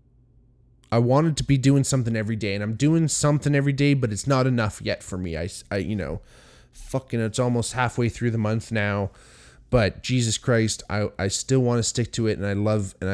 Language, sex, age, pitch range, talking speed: English, male, 20-39, 105-125 Hz, 220 wpm